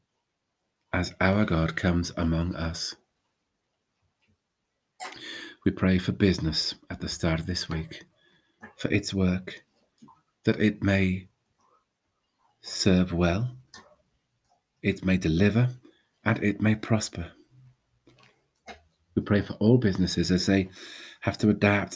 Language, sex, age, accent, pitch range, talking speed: English, male, 40-59, British, 85-105 Hz, 110 wpm